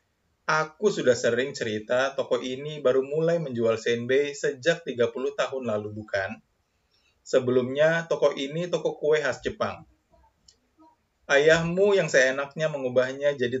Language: Indonesian